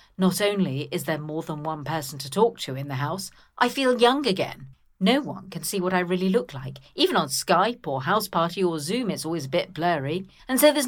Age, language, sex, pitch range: 50-69, English, female, 155-210 Hz